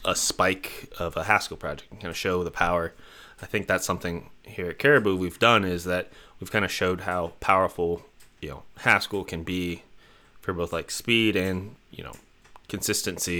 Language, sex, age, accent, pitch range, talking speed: English, male, 30-49, American, 85-105 Hz, 190 wpm